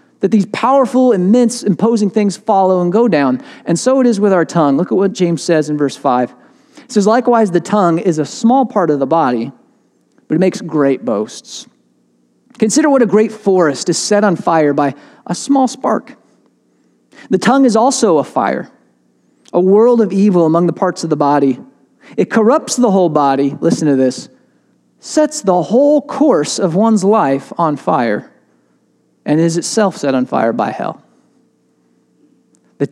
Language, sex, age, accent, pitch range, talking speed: English, male, 40-59, American, 170-235 Hz, 175 wpm